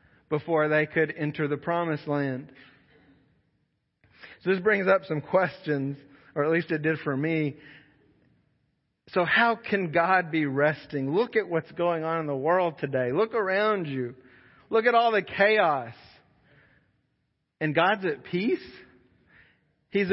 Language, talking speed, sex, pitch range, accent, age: English, 145 wpm, male, 150-200 Hz, American, 40-59